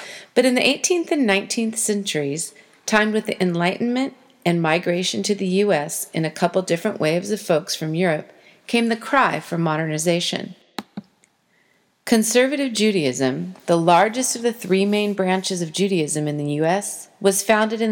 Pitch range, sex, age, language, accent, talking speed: 175-220 Hz, female, 40-59, English, American, 155 wpm